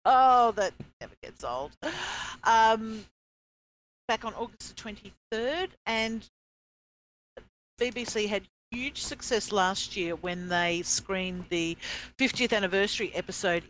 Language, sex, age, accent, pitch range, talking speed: English, female, 50-69, Australian, 160-205 Hz, 110 wpm